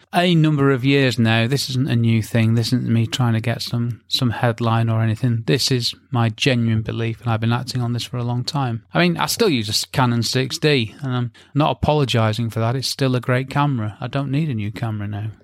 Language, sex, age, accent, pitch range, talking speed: English, male, 30-49, British, 115-145 Hz, 240 wpm